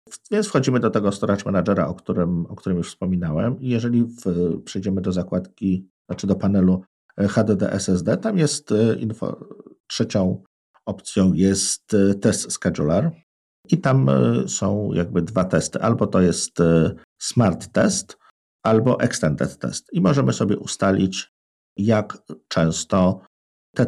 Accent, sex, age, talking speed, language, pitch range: native, male, 50-69, 120 wpm, Polish, 90-120 Hz